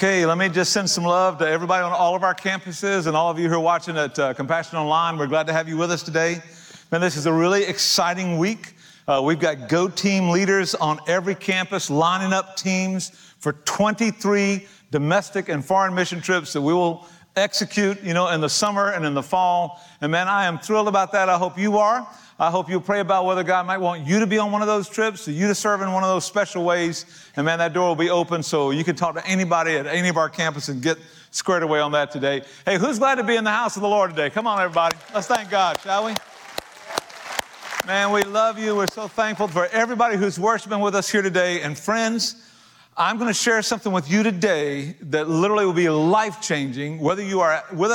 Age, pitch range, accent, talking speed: 50-69, 165-200 Hz, American, 235 wpm